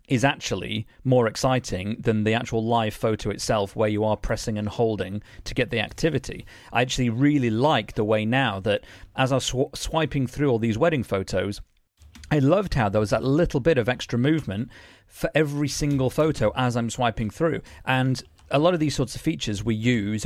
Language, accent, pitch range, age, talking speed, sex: English, British, 105-130 Hz, 40-59, 195 wpm, male